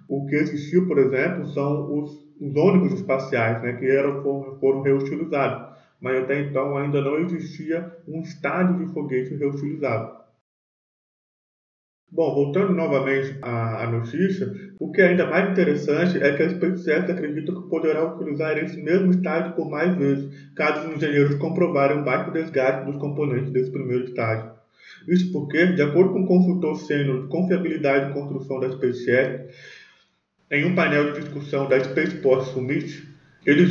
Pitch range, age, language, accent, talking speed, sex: 135-170 Hz, 20-39, Portuguese, Brazilian, 160 wpm, male